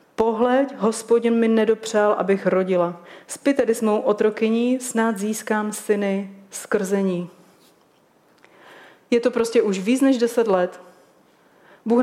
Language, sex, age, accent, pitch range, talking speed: Czech, female, 30-49, native, 195-235 Hz, 120 wpm